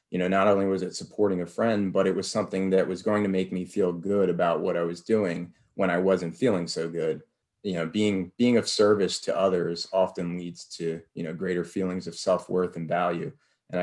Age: 20-39